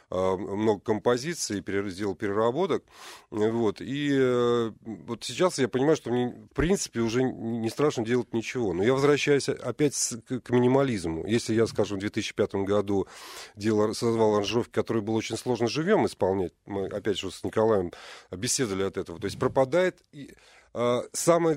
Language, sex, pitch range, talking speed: Russian, male, 105-135 Hz, 145 wpm